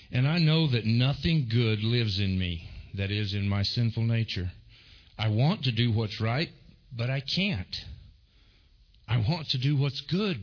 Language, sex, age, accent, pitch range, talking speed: English, male, 50-69, American, 90-120 Hz, 175 wpm